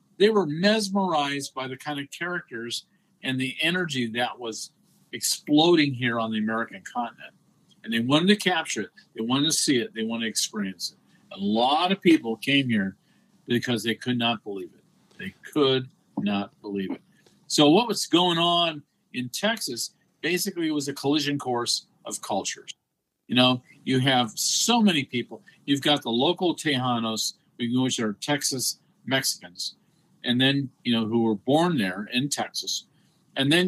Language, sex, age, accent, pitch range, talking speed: English, male, 50-69, American, 120-170 Hz, 170 wpm